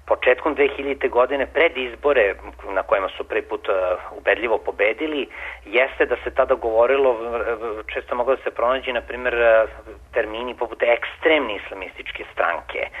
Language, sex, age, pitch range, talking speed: English, male, 40-59, 110-150 Hz, 130 wpm